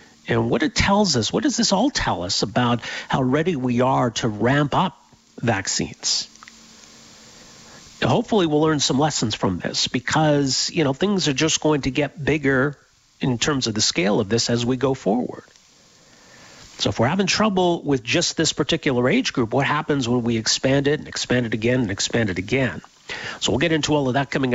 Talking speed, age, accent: 200 wpm, 50-69, American